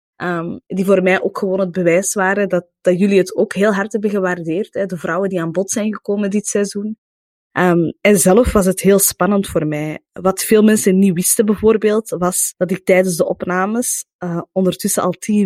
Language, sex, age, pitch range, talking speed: Dutch, female, 20-39, 180-230 Hz, 195 wpm